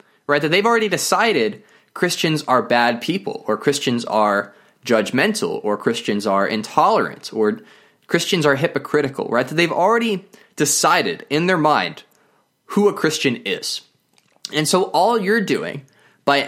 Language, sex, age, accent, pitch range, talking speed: English, male, 20-39, American, 135-185 Hz, 140 wpm